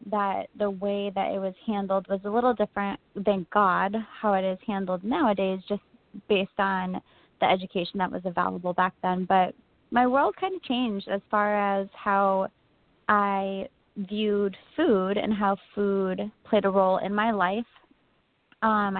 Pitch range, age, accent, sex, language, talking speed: 190-220 Hz, 20-39, American, female, English, 160 wpm